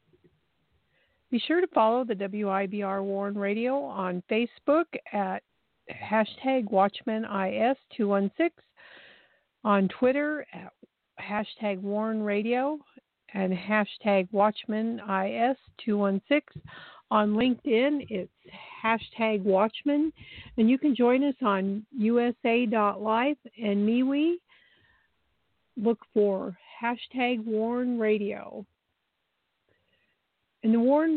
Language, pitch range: English, 210-260 Hz